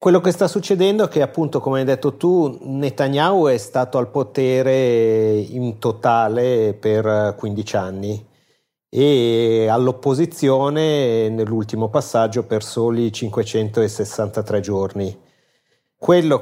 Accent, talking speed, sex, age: native, 110 wpm, male, 40-59